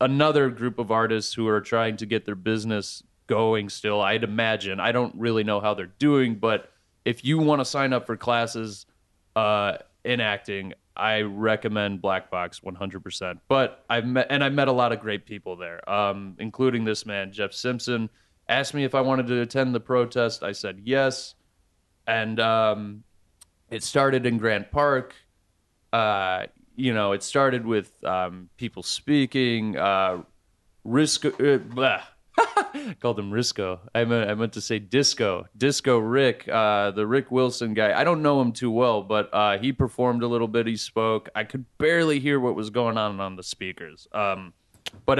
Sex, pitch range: male, 100-125 Hz